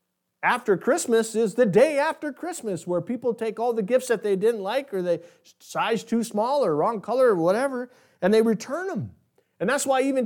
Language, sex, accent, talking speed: English, male, American, 205 wpm